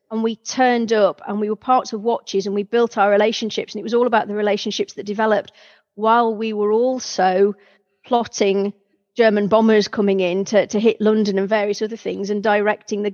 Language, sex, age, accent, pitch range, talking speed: English, female, 40-59, British, 200-225 Hz, 200 wpm